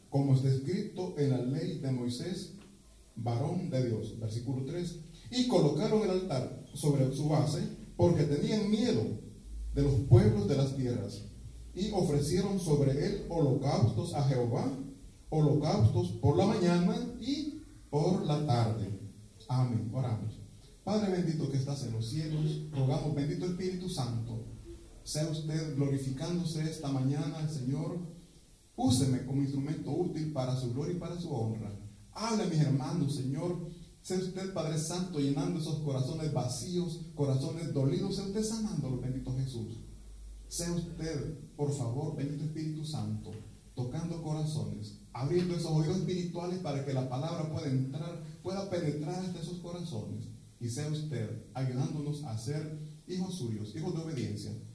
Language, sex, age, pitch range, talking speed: Italian, male, 40-59, 125-165 Hz, 140 wpm